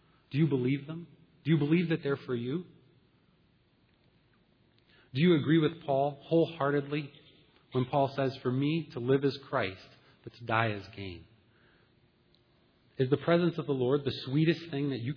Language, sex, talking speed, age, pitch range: English, male, 165 wpm, 30-49, 115-150 Hz